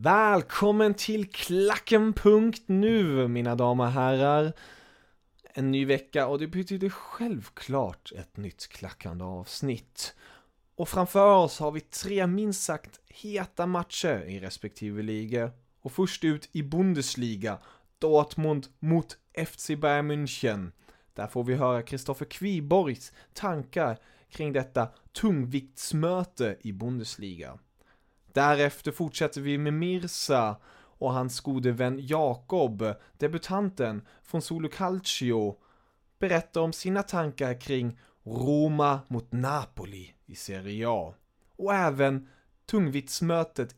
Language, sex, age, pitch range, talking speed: English, male, 20-39, 125-165 Hz, 110 wpm